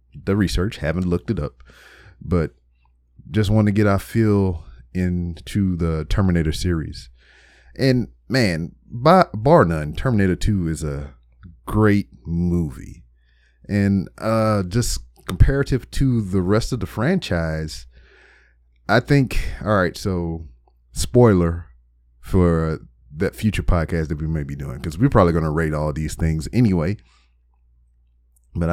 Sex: male